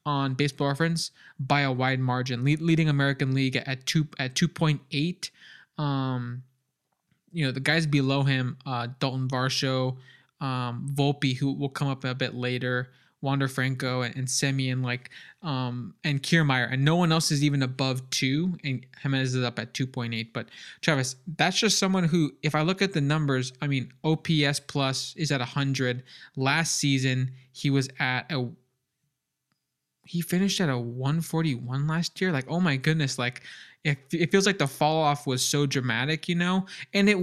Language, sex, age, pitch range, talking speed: English, male, 20-39, 130-155 Hz, 180 wpm